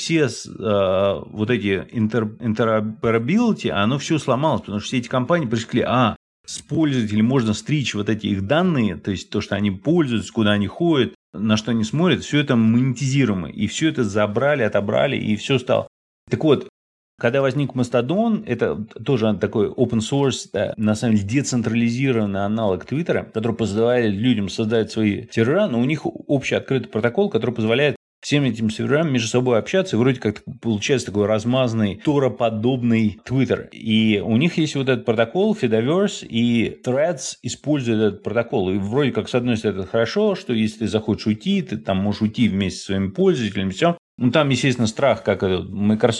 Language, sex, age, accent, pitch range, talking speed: Russian, male, 30-49, native, 105-135 Hz, 170 wpm